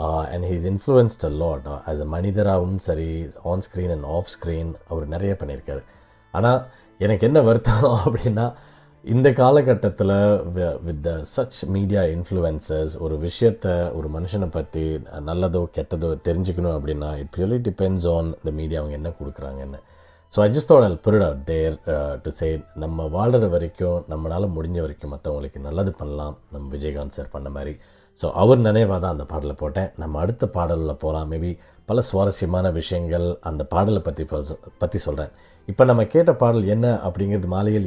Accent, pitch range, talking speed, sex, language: native, 80-105 Hz, 165 wpm, male, Tamil